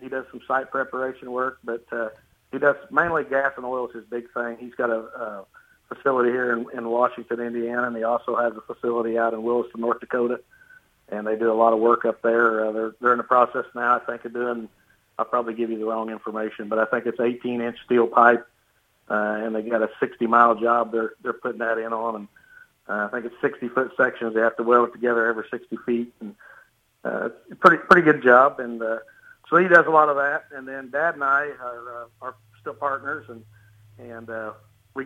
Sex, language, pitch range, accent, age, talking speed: male, English, 115-125 Hz, American, 50-69, 230 wpm